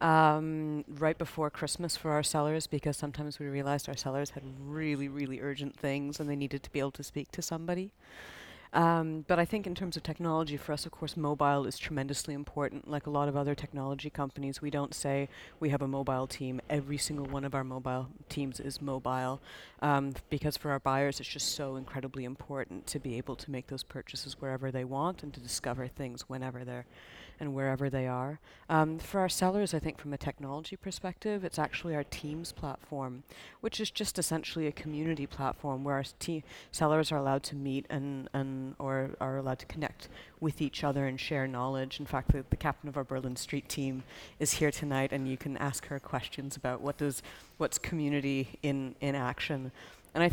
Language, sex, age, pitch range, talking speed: English, female, 40-59, 135-155 Hz, 205 wpm